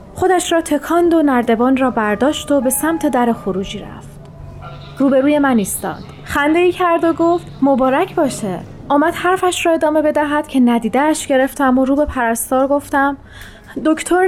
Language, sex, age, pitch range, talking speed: Persian, female, 30-49, 245-310 Hz, 155 wpm